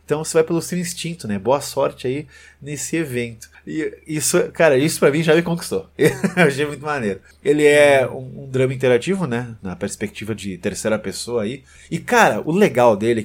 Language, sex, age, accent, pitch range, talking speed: Portuguese, male, 30-49, Brazilian, 110-155 Hz, 200 wpm